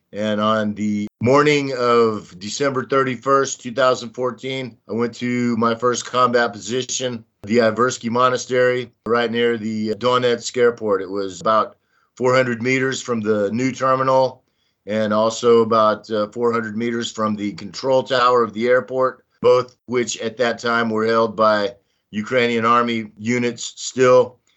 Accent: American